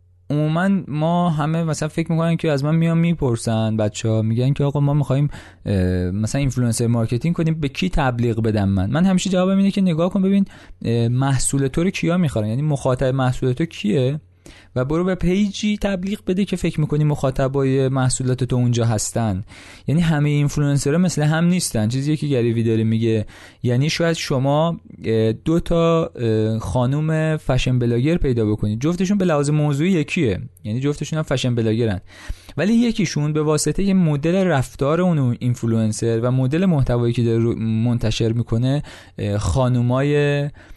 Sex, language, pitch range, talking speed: male, Persian, 115-155 Hz, 155 wpm